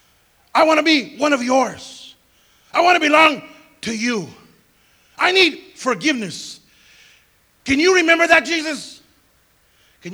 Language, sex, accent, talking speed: English, male, American, 130 wpm